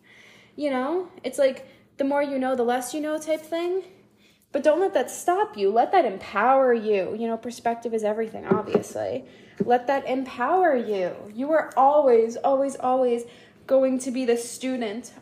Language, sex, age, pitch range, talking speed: English, female, 10-29, 240-310 Hz, 175 wpm